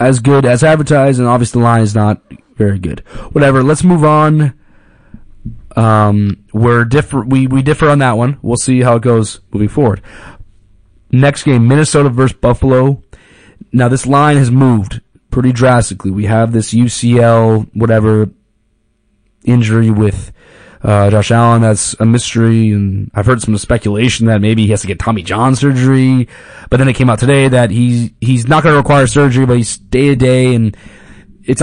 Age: 20-39